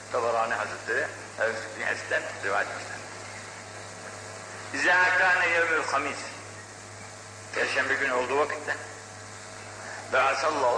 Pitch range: 105-115 Hz